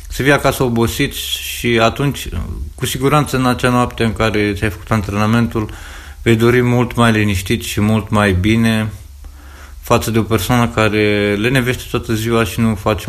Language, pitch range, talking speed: Romanian, 80-115 Hz, 165 wpm